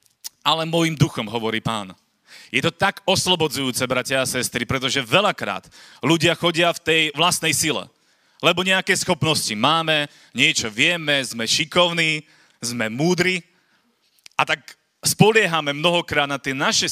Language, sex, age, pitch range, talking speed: Slovak, male, 30-49, 145-180 Hz, 130 wpm